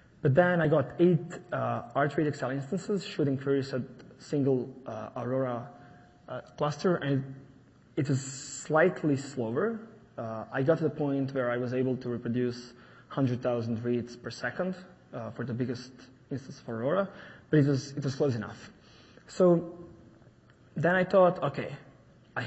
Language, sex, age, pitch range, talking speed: English, male, 20-39, 125-155 Hz, 155 wpm